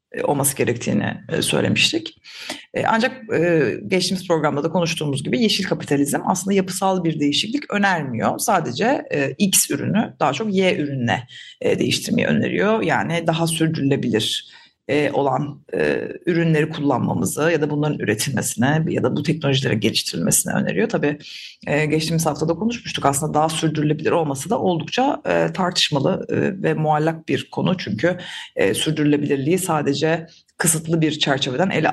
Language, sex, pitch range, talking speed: Turkish, female, 150-185 Hz, 130 wpm